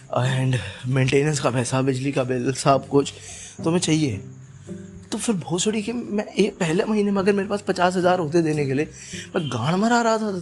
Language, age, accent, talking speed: Hindi, 20-39, native, 205 wpm